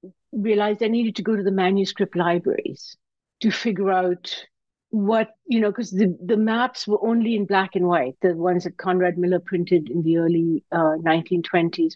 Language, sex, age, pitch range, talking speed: English, female, 60-79, 180-220 Hz, 180 wpm